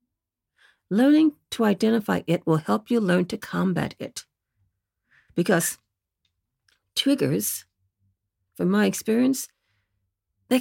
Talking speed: 95 wpm